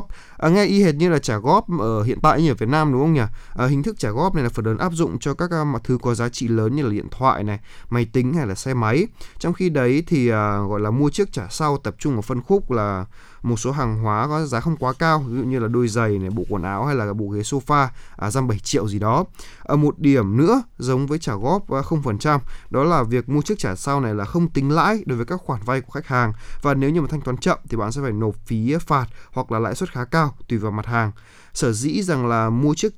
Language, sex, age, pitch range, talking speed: Vietnamese, male, 20-39, 115-150 Hz, 290 wpm